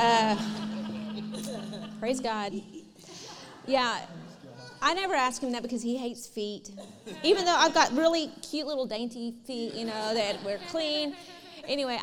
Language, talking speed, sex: English, 140 wpm, female